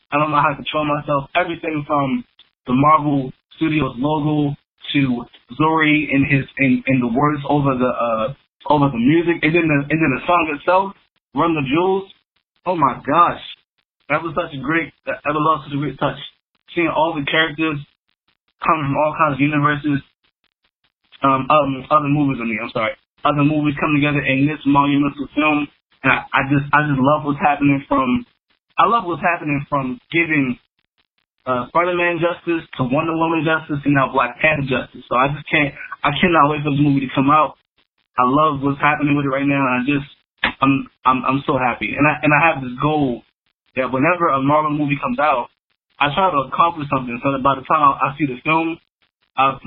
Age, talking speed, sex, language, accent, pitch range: 20-39, 195 wpm, male, English, American, 135-155 Hz